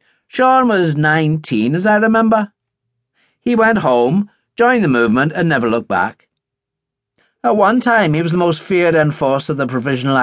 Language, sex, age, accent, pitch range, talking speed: English, male, 40-59, British, 130-195 Hz, 160 wpm